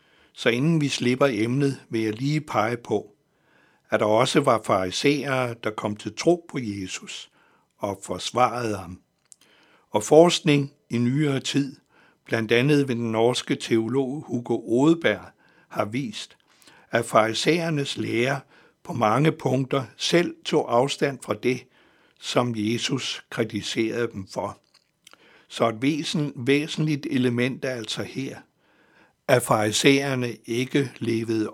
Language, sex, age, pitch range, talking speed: Danish, male, 60-79, 115-140 Hz, 125 wpm